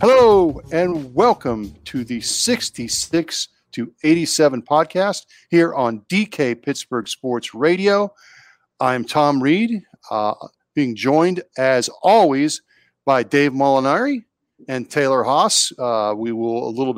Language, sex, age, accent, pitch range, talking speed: English, male, 40-59, American, 125-165 Hz, 120 wpm